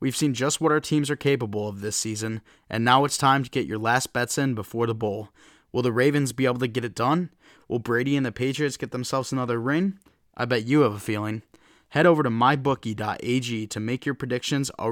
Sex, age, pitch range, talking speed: male, 20-39, 115-145 Hz, 230 wpm